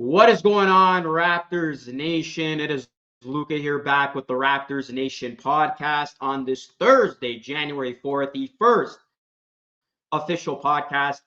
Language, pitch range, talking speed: English, 130-170 Hz, 135 wpm